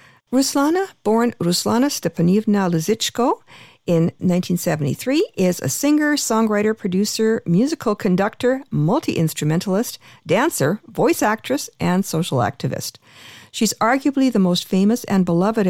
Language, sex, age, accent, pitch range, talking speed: English, female, 50-69, American, 175-235 Hz, 105 wpm